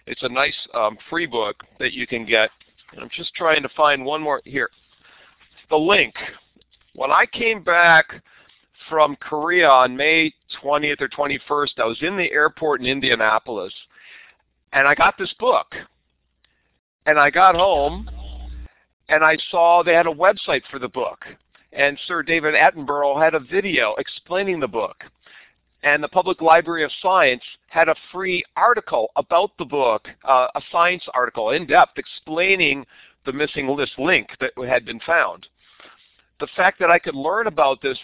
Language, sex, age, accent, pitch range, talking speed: English, male, 50-69, American, 135-170 Hz, 160 wpm